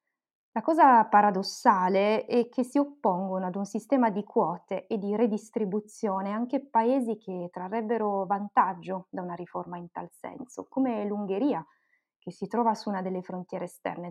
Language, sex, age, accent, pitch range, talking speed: Italian, female, 20-39, native, 195-240 Hz, 155 wpm